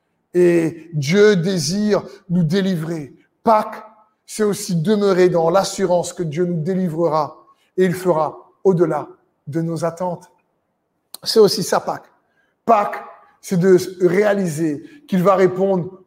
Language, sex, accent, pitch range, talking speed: French, male, French, 170-195 Hz, 125 wpm